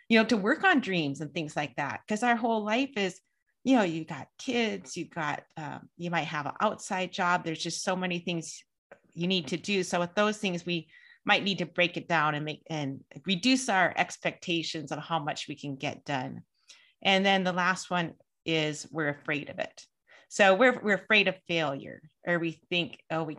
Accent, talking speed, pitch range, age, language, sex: American, 215 wpm, 160-210 Hz, 30-49, English, female